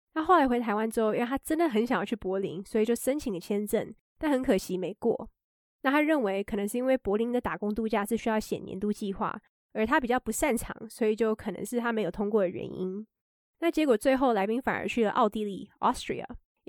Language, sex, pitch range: Chinese, female, 210-255 Hz